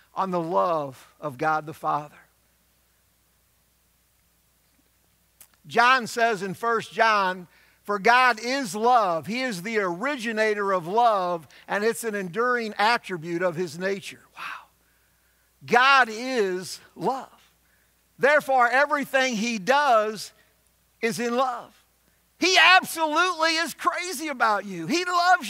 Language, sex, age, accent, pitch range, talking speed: English, male, 50-69, American, 195-275 Hz, 115 wpm